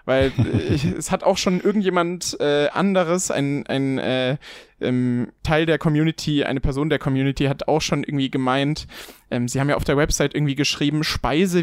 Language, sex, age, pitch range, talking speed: German, male, 20-39, 130-165 Hz, 180 wpm